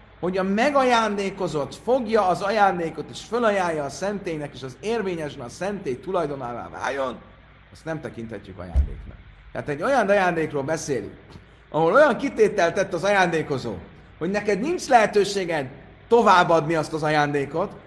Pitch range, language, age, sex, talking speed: 130-210 Hz, Hungarian, 30-49, male, 135 wpm